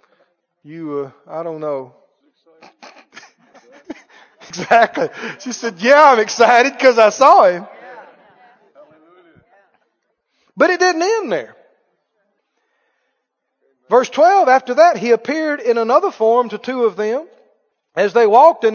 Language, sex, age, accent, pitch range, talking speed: English, male, 40-59, American, 260-370 Hz, 120 wpm